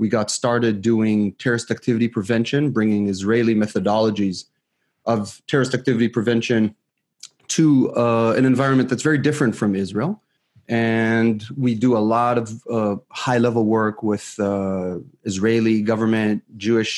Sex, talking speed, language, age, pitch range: male, 130 wpm, English, 30-49, 105-125 Hz